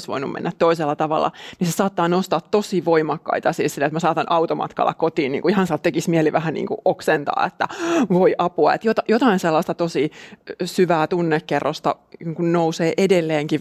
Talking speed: 165 wpm